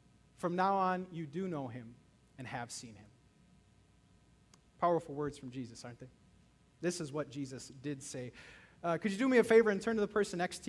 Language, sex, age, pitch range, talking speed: English, male, 30-49, 175-255 Hz, 210 wpm